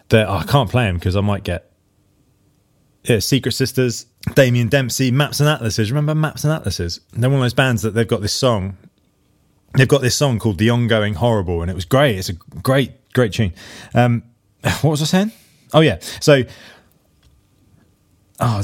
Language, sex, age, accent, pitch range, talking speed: English, male, 20-39, British, 100-130 Hz, 185 wpm